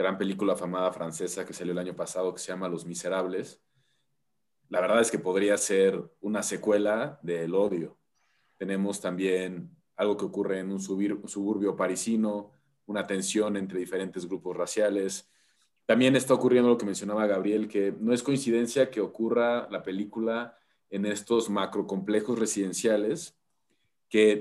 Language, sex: Spanish, male